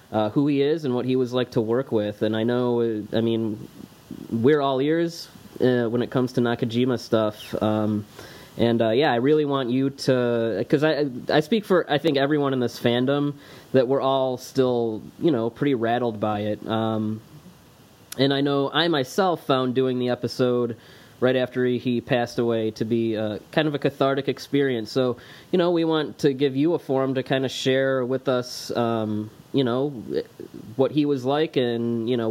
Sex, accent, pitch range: male, American, 115-140 Hz